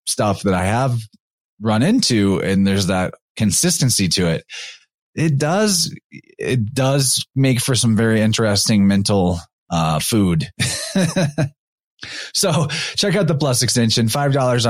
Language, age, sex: English, 20-39, male